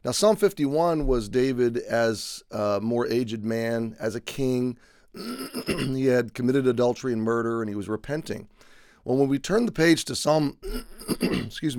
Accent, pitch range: American, 105-130 Hz